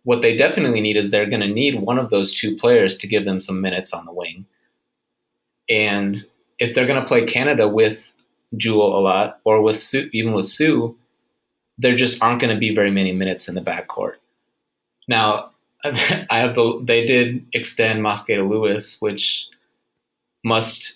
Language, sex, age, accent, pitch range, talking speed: English, male, 20-39, American, 105-125 Hz, 180 wpm